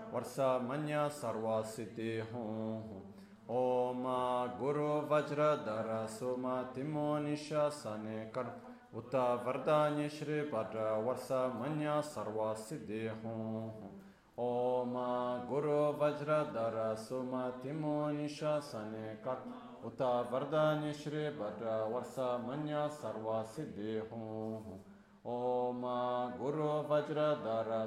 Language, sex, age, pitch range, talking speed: Italian, male, 30-49, 110-150 Hz, 80 wpm